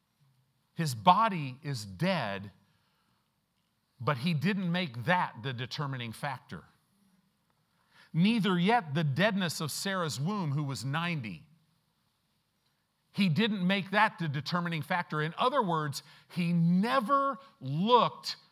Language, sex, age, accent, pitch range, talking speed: English, male, 50-69, American, 120-180 Hz, 115 wpm